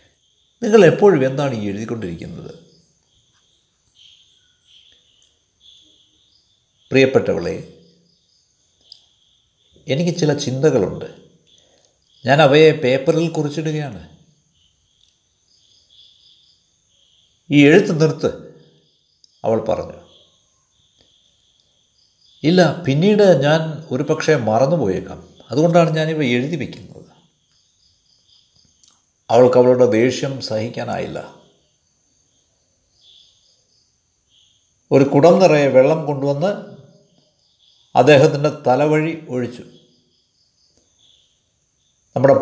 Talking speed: 55 wpm